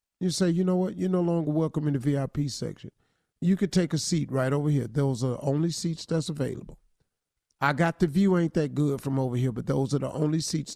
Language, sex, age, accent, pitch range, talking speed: English, male, 50-69, American, 150-205 Hz, 245 wpm